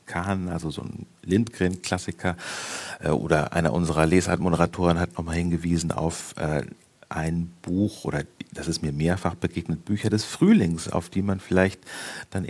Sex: male